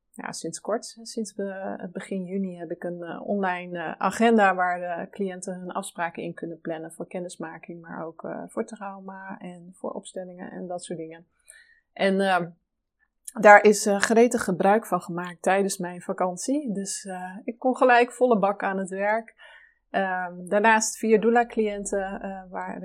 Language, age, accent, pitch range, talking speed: Dutch, 30-49, Dutch, 180-230 Hz, 160 wpm